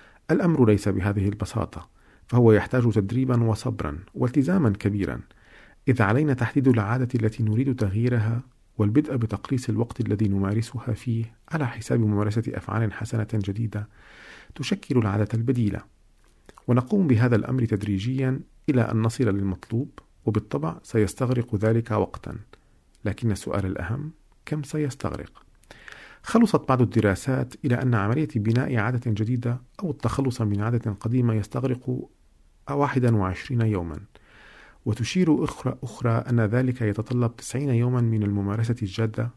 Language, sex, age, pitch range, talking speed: Arabic, male, 50-69, 105-125 Hz, 115 wpm